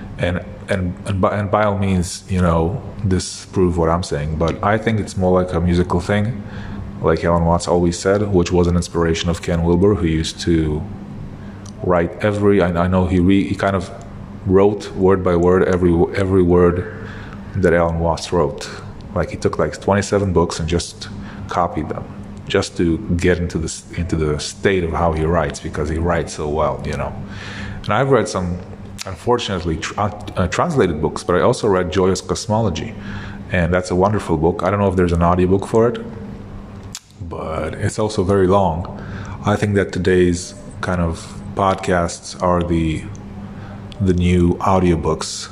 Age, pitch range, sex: 30-49, 85-100 Hz, male